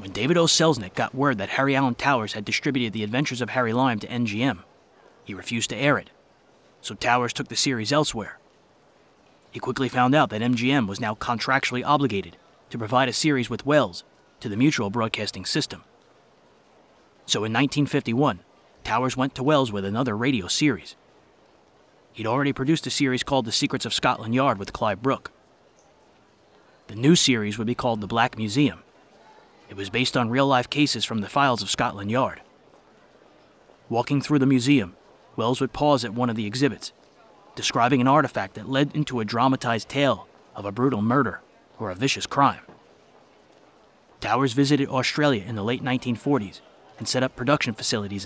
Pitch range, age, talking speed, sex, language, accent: 115-140 Hz, 30-49, 170 wpm, male, English, American